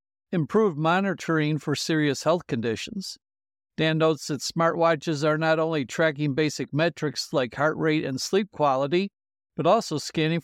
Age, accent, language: 60-79, American, English